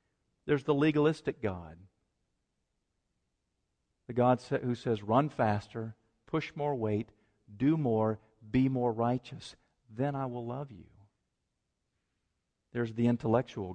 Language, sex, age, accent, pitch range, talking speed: English, male, 50-69, American, 105-145 Hz, 115 wpm